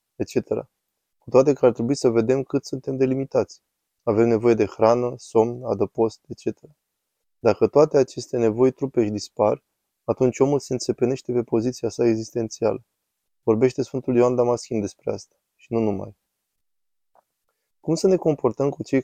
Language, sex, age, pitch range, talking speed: Romanian, male, 20-39, 110-125 Hz, 150 wpm